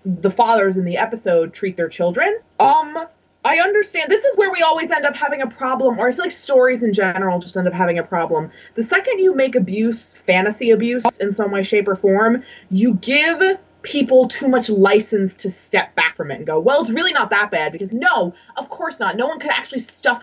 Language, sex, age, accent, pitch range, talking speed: English, female, 20-39, American, 195-260 Hz, 225 wpm